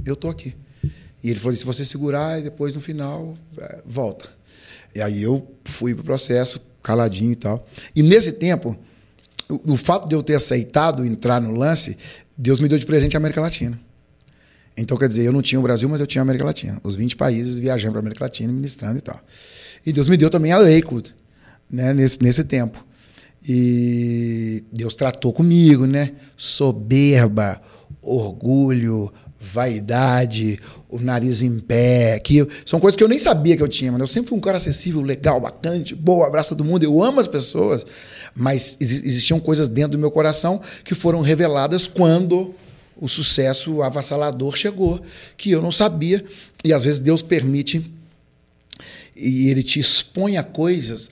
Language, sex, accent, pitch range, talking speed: Portuguese, male, Brazilian, 120-155 Hz, 180 wpm